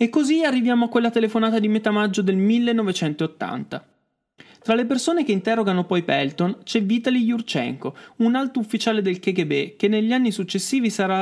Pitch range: 160-235 Hz